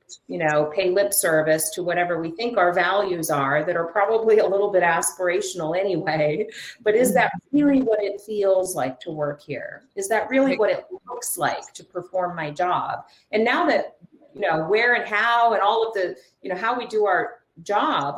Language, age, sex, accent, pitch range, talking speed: English, 40-59, female, American, 180-245 Hz, 200 wpm